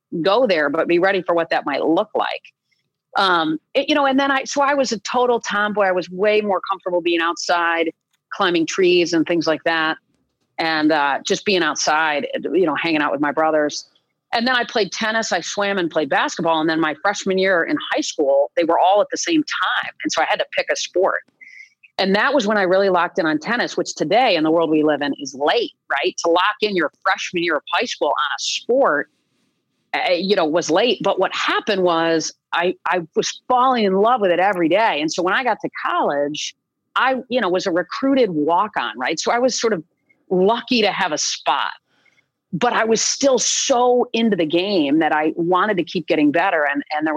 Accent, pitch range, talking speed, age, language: American, 170-245 Hz, 225 wpm, 40-59, English